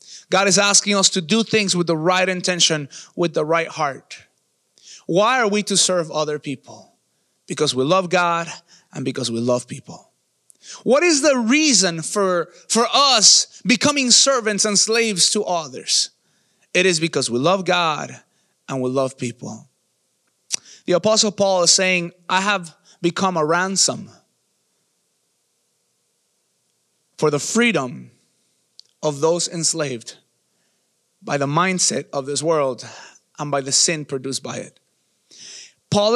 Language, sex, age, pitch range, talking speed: English, male, 30-49, 155-195 Hz, 140 wpm